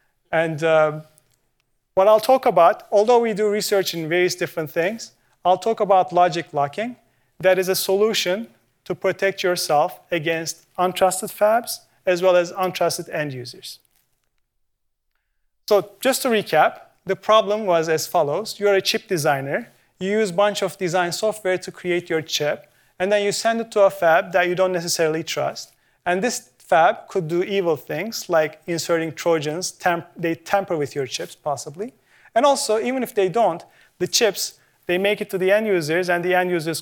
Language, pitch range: English, 165-205 Hz